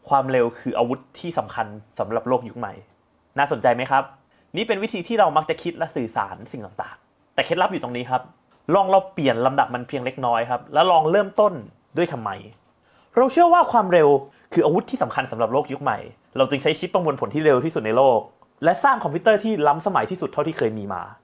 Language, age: English, 30-49